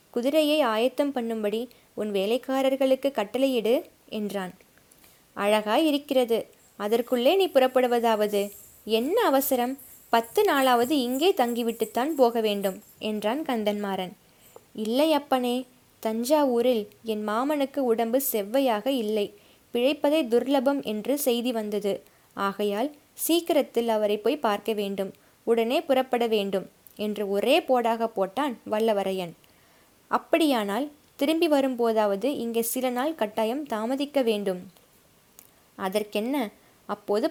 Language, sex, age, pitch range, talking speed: Tamil, female, 20-39, 215-275 Hz, 95 wpm